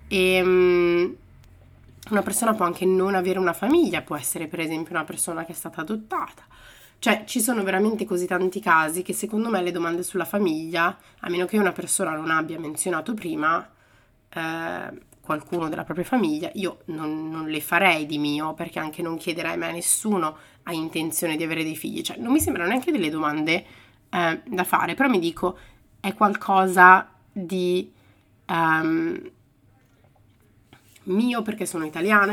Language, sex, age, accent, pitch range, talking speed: Italian, female, 30-49, native, 160-195 Hz, 165 wpm